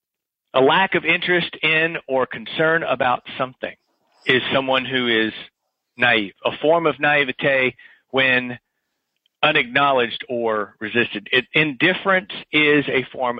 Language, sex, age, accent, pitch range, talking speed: English, male, 40-59, American, 120-150 Hz, 115 wpm